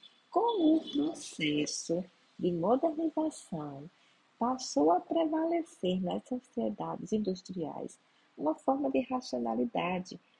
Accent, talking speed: Brazilian, 85 wpm